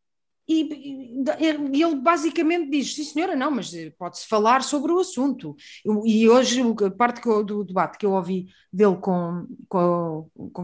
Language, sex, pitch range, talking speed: Portuguese, female, 195-305 Hz, 140 wpm